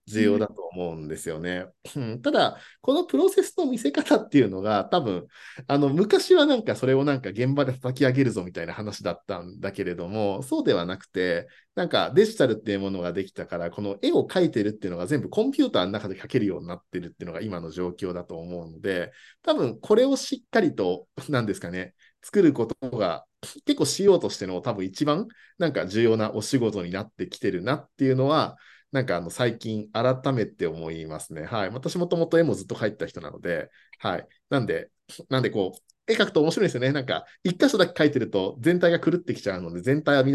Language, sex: Japanese, male